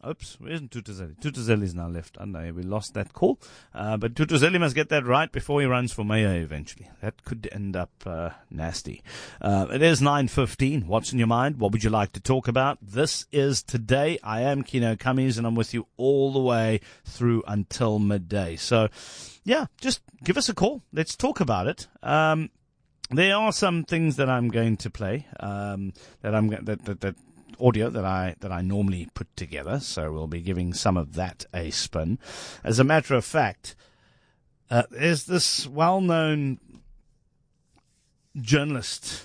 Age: 40-59